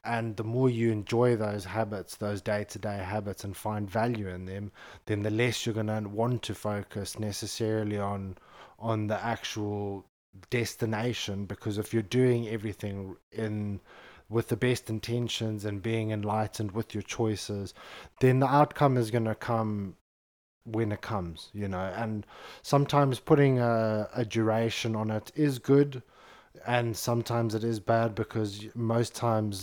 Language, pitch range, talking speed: English, 105-115 Hz, 155 wpm